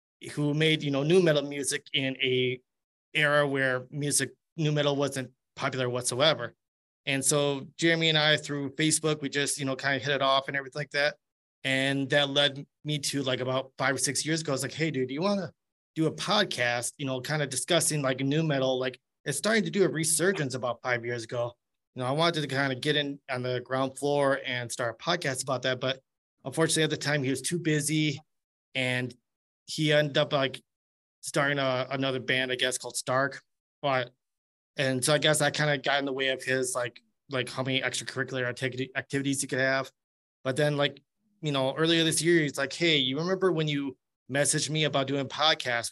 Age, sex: 30-49, male